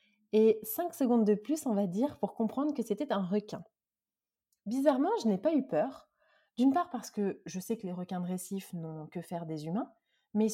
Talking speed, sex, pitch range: 210 wpm, female, 195-250 Hz